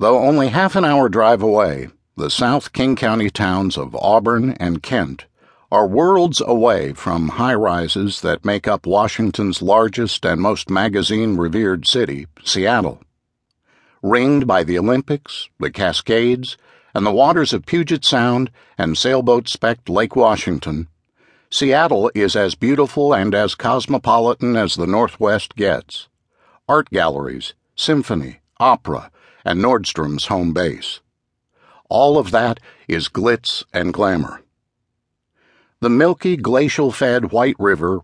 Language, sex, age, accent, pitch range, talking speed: English, male, 60-79, American, 95-130 Hz, 125 wpm